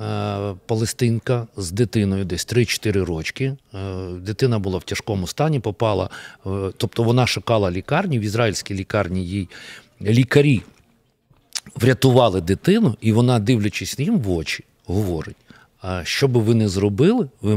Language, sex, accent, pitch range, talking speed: Ukrainian, male, native, 100-130 Hz, 125 wpm